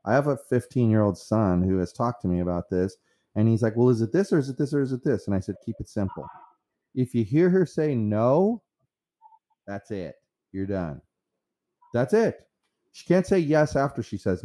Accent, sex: American, male